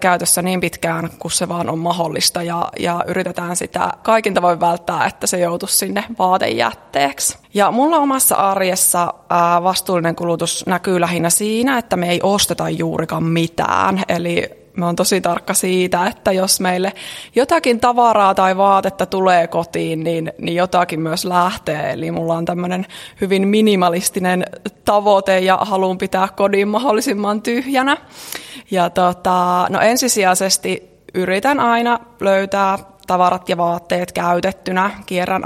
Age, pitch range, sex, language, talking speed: 20-39, 180-220 Hz, female, Finnish, 135 wpm